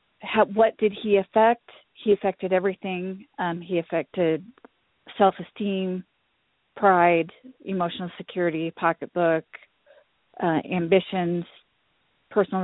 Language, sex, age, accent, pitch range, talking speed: English, female, 40-59, American, 170-200 Hz, 85 wpm